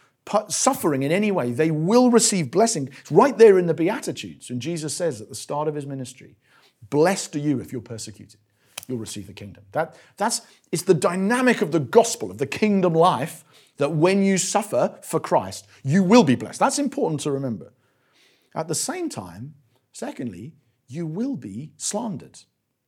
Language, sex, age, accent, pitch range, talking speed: English, male, 50-69, British, 130-195 Hz, 180 wpm